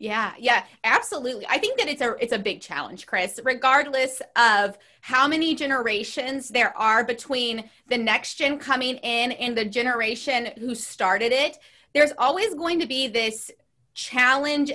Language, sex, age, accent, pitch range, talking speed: English, female, 20-39, American, 225-280 Hz, 160 wpm